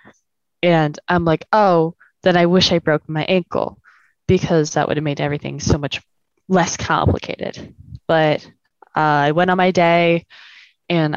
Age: 10-29